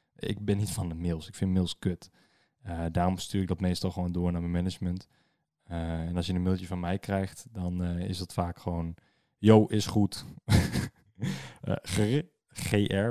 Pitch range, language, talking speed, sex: 90-115 Hz, Dutch, 190 wpm, male